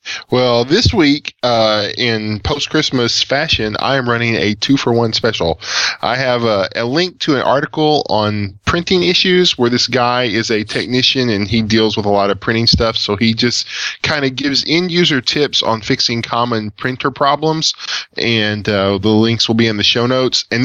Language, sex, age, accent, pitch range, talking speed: English, male, 10-29, American, 110-135 Hz, 185 wpm